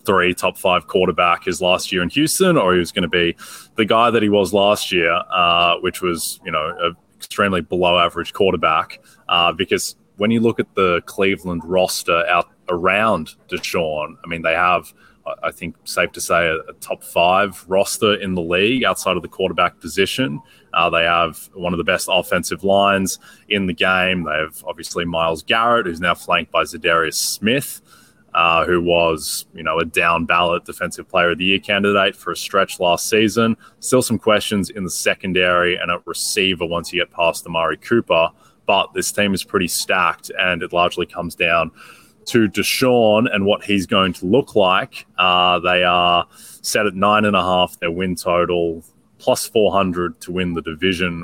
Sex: male